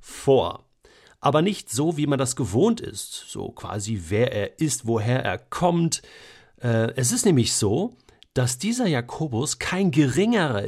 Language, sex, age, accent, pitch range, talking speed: German, male, 50-69, German, 120-165 Hz, 145 wpm